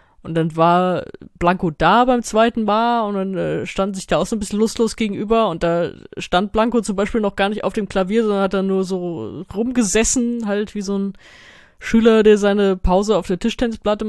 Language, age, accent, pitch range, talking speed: German, 20-39, German, 185-225 Hz, 205 wpm